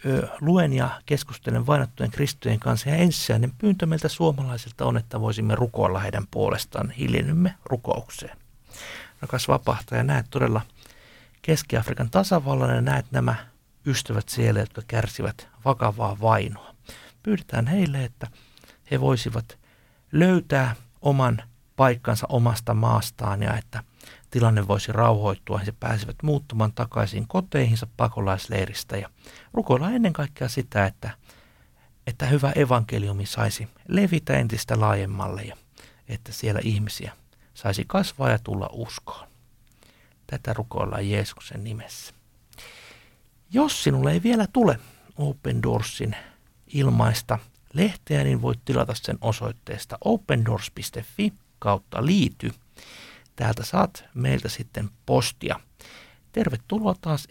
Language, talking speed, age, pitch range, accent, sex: Finnish, 110 wpm, 60-79, 110-140 Hz, native, male